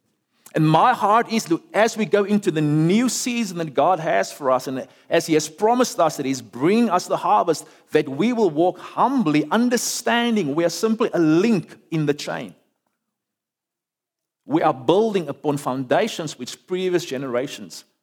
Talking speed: 165 wpm